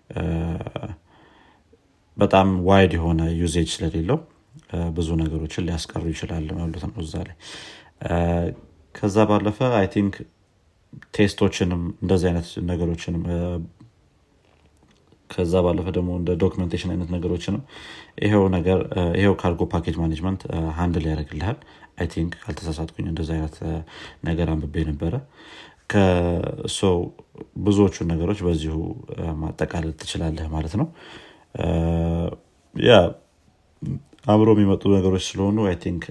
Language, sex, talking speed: Amharic, male, 105 wpm